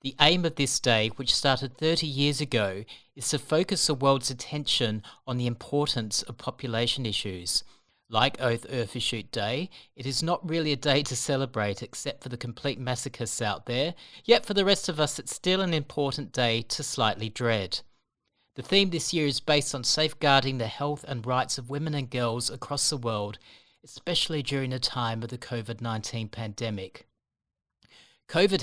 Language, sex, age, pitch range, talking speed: English, male, 40-59, 115-145 Hz, 175 wpm